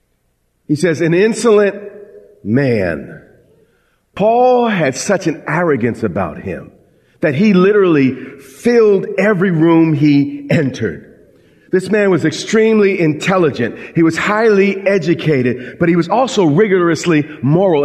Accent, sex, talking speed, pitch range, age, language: American, male, 120 wpm, 160-225 Hz, 40-59, English